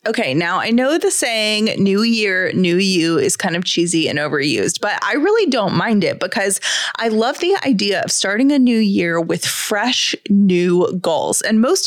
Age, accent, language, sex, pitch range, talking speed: 20-39, American, English, female, 195-275 Hz, 190 wpm